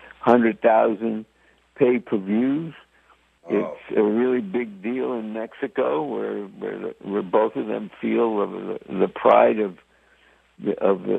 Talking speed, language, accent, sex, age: 125 wpm, English, American, male, 60-79